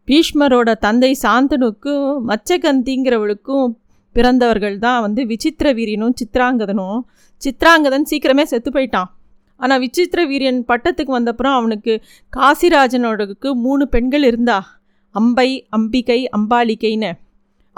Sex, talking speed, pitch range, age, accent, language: female, 95 wpm, 220-270 Hz, 30-49, native, Tamil